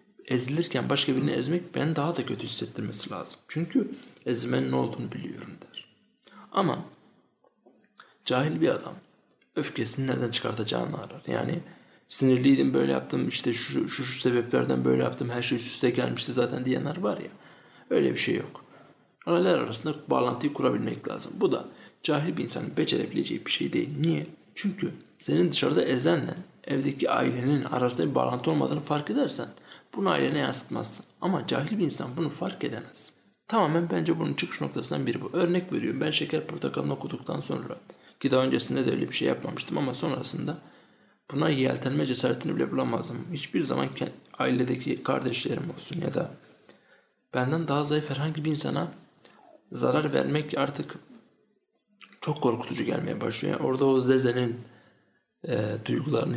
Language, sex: Turkish, male